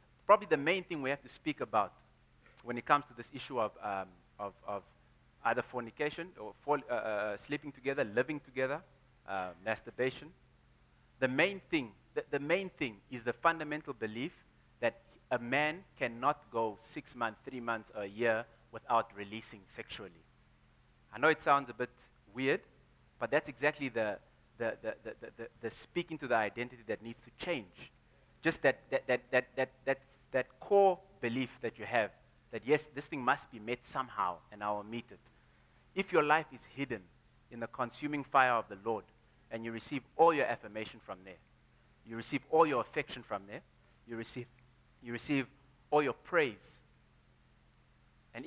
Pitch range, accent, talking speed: 115-140 Hz, South African, 175 wpm